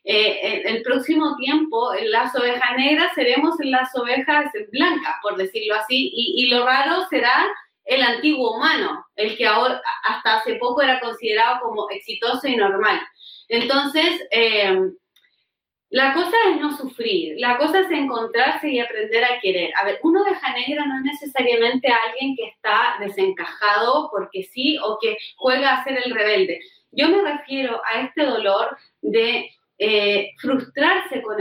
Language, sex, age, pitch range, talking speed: Spanish, female, 30-49, 230-300 Hz, 160 wpm